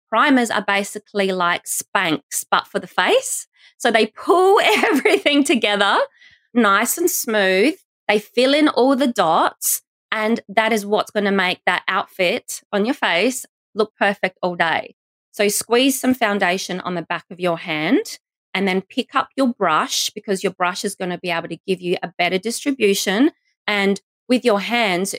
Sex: female